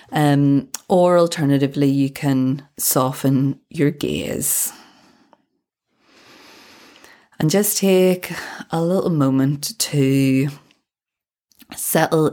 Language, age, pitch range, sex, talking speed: English, 20-39, 130-155 Hz, female, 80 wpm